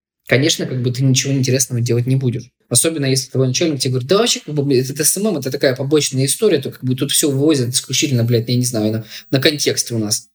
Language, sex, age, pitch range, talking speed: Russian, male, 20-39, 120-150 Hz, 245 wpm